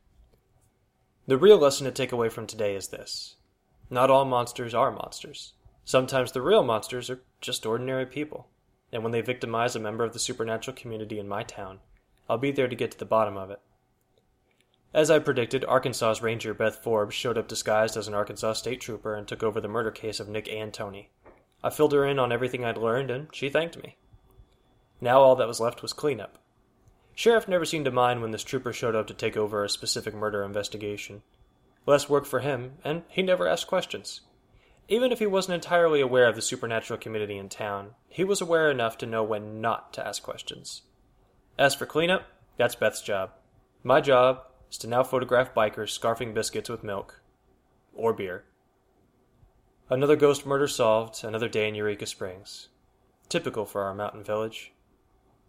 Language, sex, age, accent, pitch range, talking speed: English, male, 10-29, American, 110-135 Hz, 185 wpm